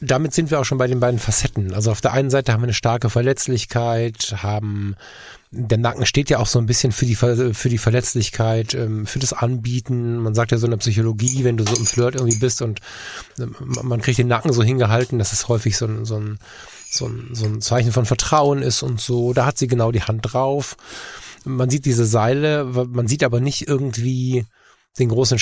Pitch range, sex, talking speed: 110-130 Hz, male, 210 wpm